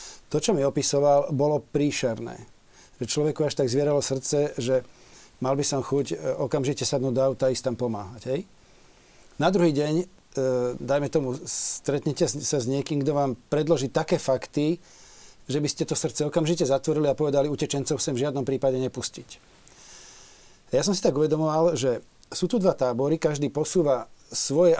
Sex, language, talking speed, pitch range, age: male, Slovak, 160 wpm, 135-165 Hz, 40-59